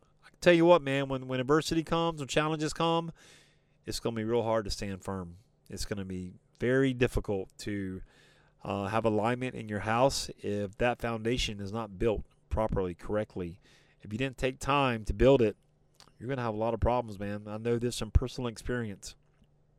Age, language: 30-49, English